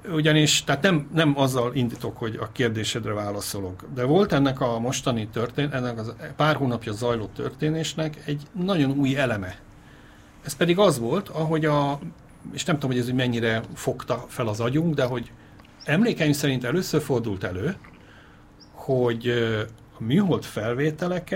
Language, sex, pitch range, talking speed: Hungarian, male, 115-145 Hz, 150 wpm